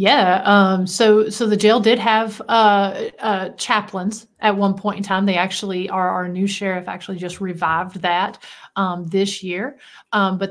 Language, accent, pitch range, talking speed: English, American, 185-205 Hz, 175 wpm